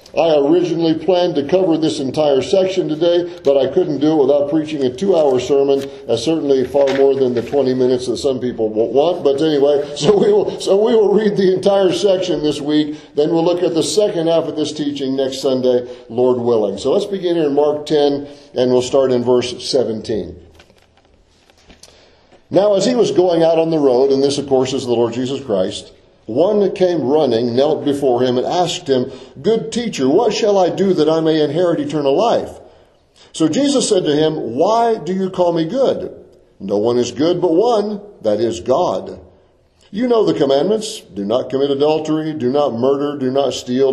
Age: 50-69